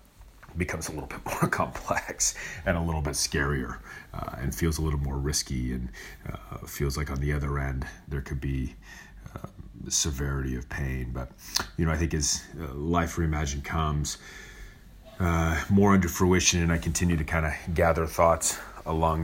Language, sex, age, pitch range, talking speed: English, male, 30-49, 75-85 Hz, 175 wpm